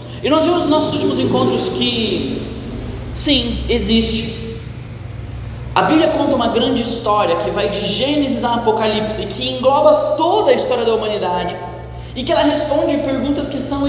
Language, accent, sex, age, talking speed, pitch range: Portuguese, Brazilian, male, 10-29, 155 wpm, 215-280 Hz